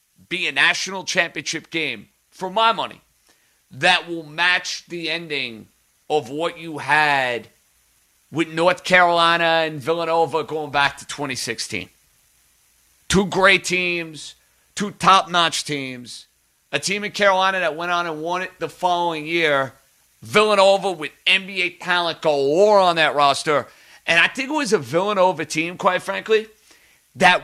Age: 40-59